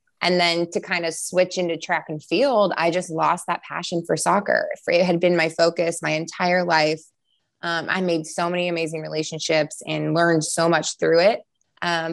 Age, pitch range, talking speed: 20-39, 150-175 Hz, 195 wpm